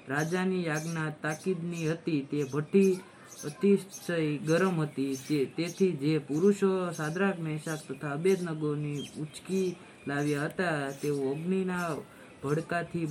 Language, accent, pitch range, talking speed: Gujarati, native, 145-170 Hz, 45 wpm